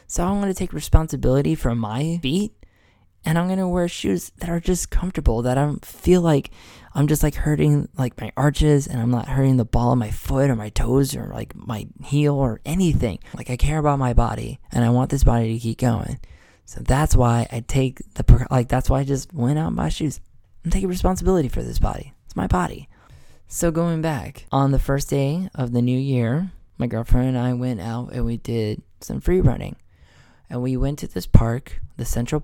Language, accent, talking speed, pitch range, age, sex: English, American, 220 wpm, 115-140 Hz, 10-29, male